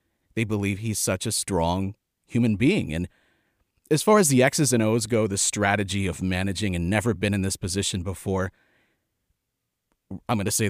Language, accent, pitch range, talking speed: English, American, 100-135 Hz, 180 wpm